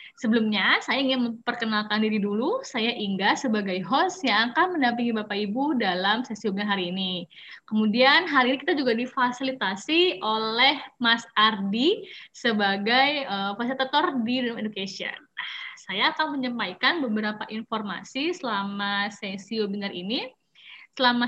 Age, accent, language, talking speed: 20-39, Indonesian, English, 125 wpm